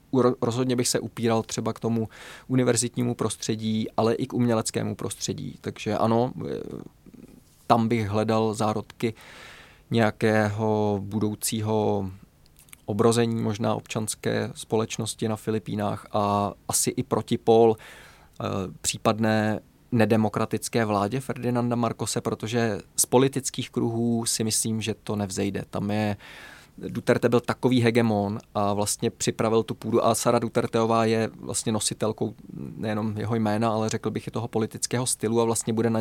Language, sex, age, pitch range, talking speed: Czech, male, 20-39, 110-115 Hz, 130 wpm